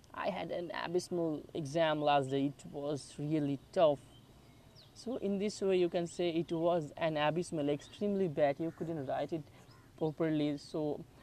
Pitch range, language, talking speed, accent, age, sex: 140-185 Hz, English, 160 wpm, Indian, 20-39, male